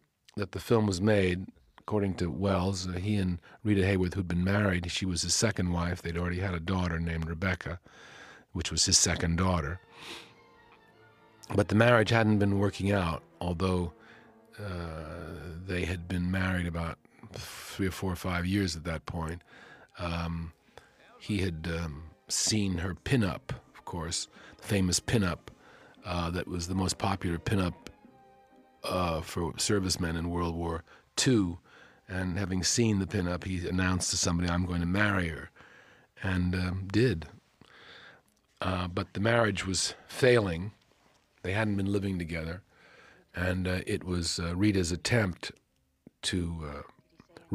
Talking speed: 150 wpm